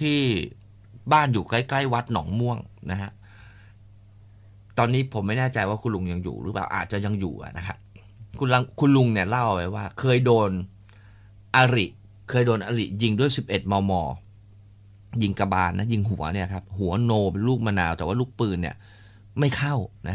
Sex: male